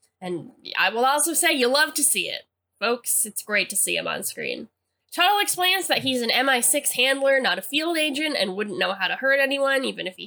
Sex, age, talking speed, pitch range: female, 10-29, 230 wpm, 215-295 Hz